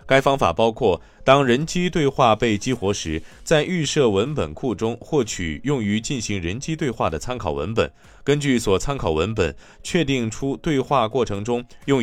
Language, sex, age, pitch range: Chinese, male, 20-39, 100-135 Hz